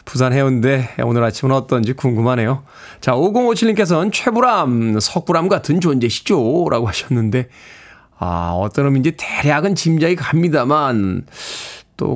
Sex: male